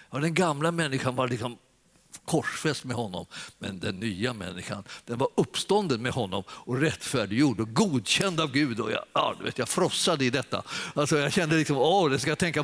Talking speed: 200 wpm